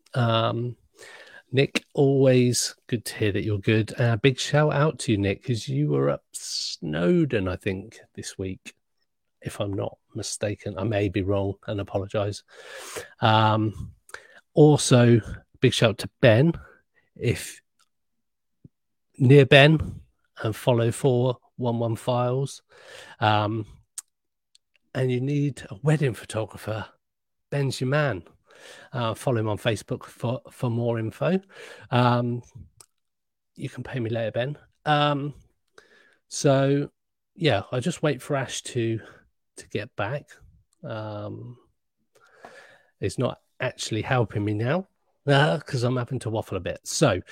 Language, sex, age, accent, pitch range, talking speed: English, male, 40-59, British, 110-140 Hz, 130 wpm